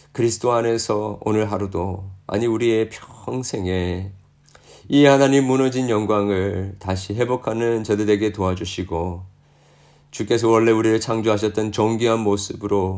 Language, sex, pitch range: Korean, male, 95-115 Hz